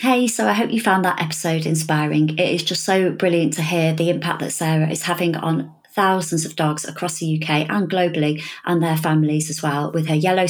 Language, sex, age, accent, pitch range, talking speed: English, female, 30-49, British, 155-200 Hz, 225 wpm